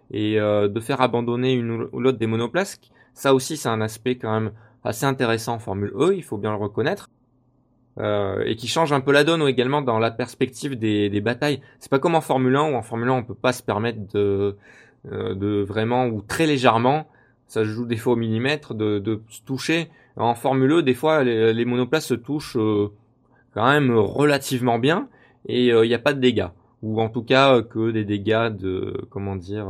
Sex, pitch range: male, 110-135 Hz